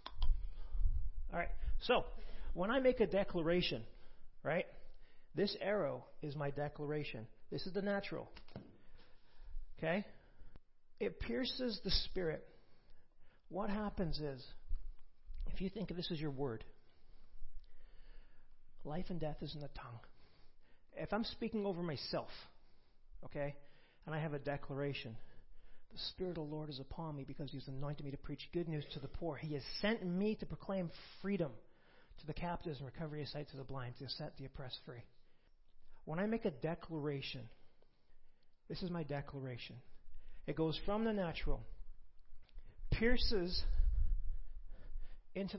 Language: English